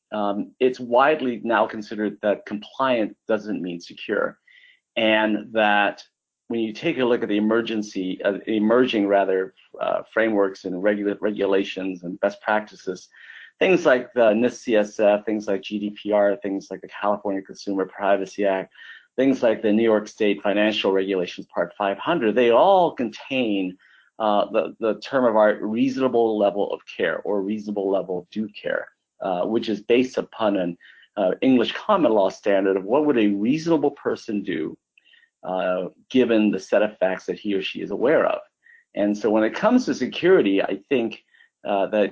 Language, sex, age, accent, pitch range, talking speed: English, male, 40-59, American, 100-115 Hz, 165 wpm